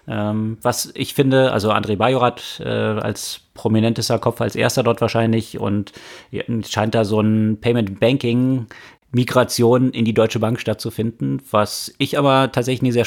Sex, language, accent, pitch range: male, German, German, 100-115 Hz